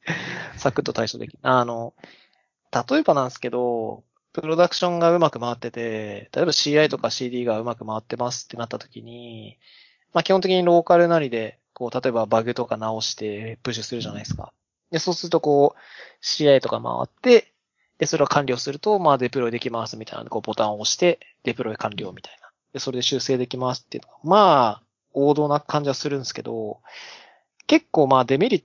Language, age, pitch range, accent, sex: Japanese, 20-39, 115-145 Hz, native, male